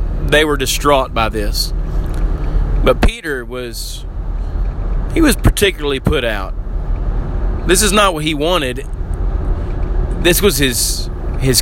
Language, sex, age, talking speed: English, male, 30-49, 120 wpm